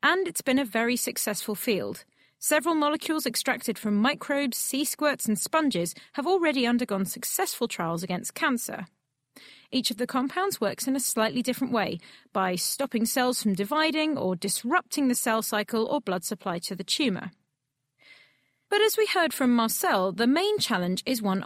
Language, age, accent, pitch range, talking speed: English, 30-49, British, 200-290 Hz, 170 wpm